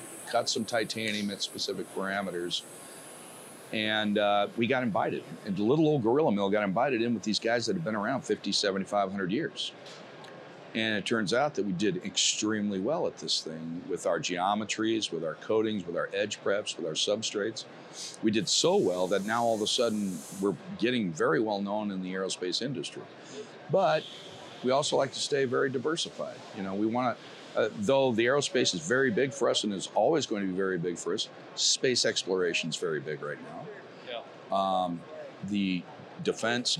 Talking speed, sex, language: 190 wpm, male, English